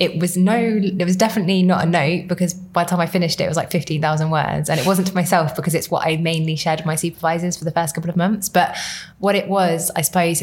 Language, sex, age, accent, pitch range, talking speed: English, female, 20-39, British, 150-170 Hz, 270 wpm